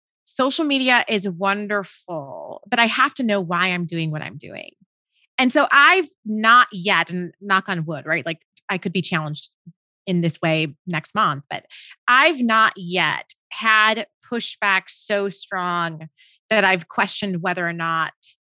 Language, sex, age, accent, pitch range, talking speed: English, female, 30-49, American, 175-230 Hz, 160 wpm